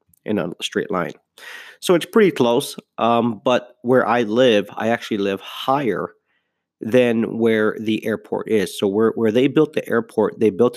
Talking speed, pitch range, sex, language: 175 wpm, 105-120 Hz, male, English